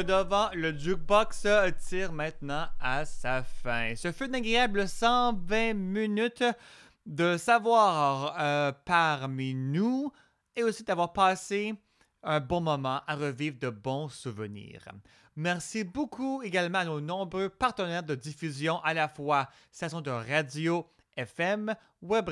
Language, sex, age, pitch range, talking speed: French, male, 30-49, 135-195 Hz, 125 wpm